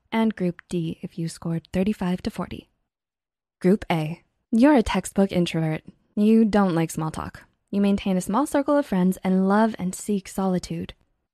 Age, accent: 10-29, American